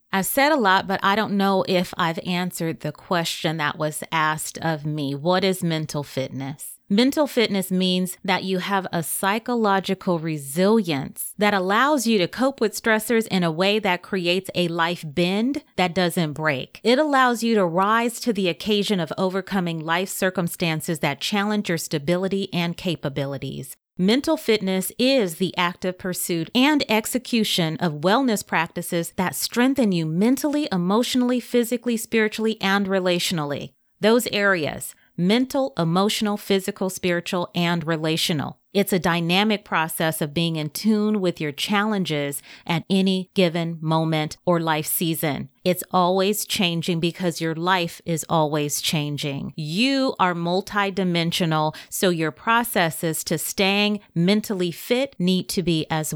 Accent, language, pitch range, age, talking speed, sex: American, English, 165-210 Hz, 30-49, 145 wpm, female